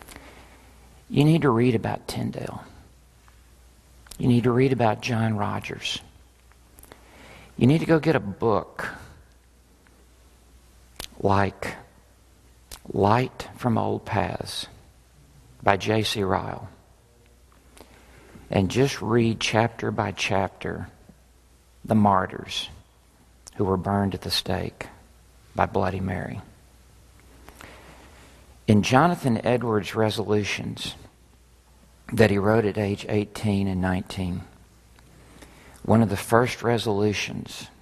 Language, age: English, 50-69